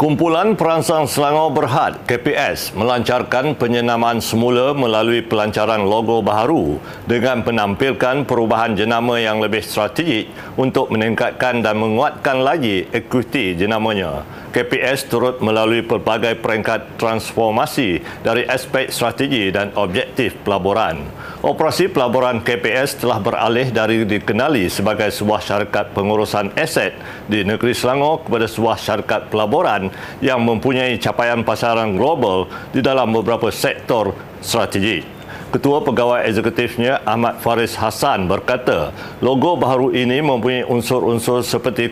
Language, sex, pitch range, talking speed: Malay, male, 110-125 Hz, 115 wpm